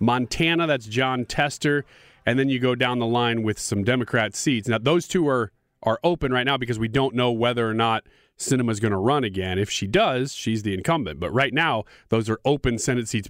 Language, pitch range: English, 110-160 Hz